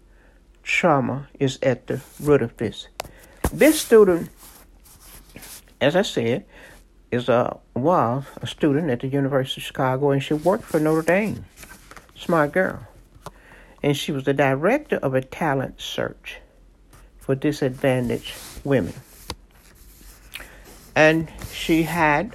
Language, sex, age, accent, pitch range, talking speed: English, male, 60-79, American, 130-150 Hz, 120 wpm